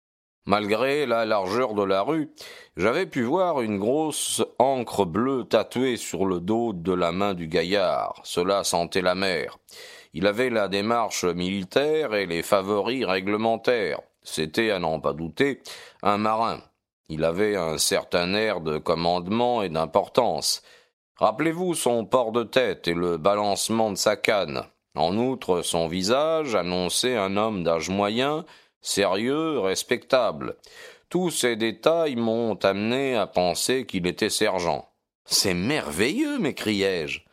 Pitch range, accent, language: 95-125 Hz, French, French